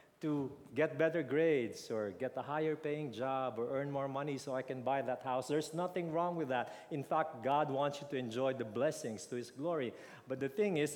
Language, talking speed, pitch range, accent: English, 220 wpm, 120-150 Hz, Filipino